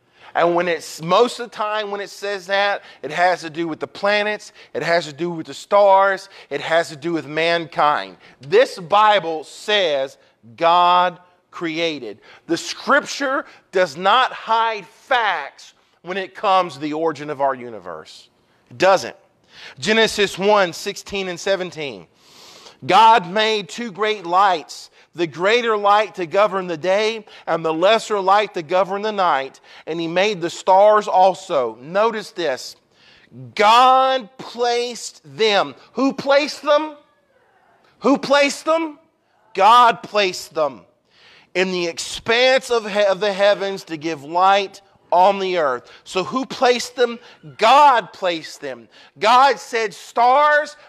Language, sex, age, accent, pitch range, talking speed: English, male, 40-59, American, 175-235 Hz, 140 wpm